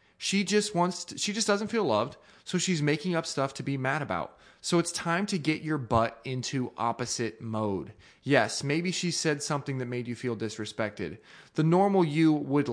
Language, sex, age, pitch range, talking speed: English, male, 20-39, 115-155 Hz, 200 wpm